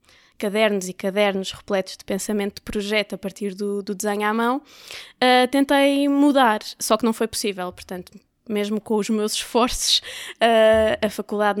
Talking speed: 155 wpm